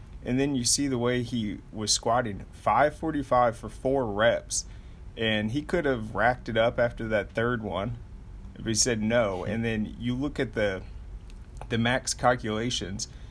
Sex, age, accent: male, 30-49, American